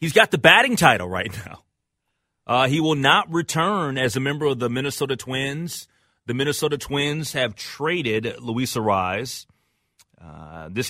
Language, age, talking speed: English, 30-49, 155 wpm